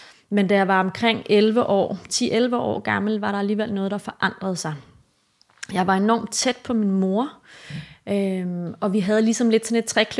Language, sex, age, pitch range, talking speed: Danish, female, 30-49, 185-215 Hz, 180 wpm